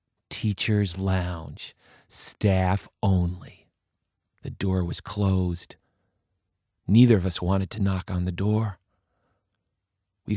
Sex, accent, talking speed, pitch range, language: male, American, 105 wpm, 95-140 Hz, English